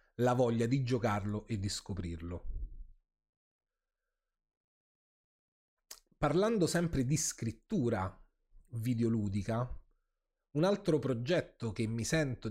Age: 30-49